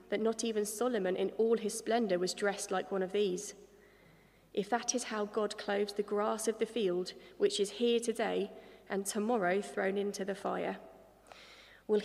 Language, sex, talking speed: English, female, 180 wpm